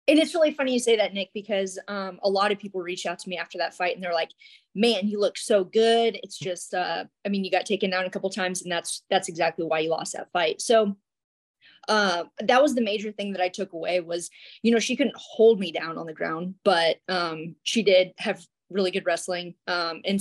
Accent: American